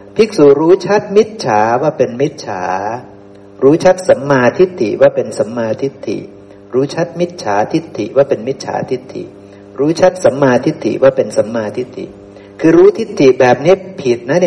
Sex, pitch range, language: male, 100-160 Hz, Thai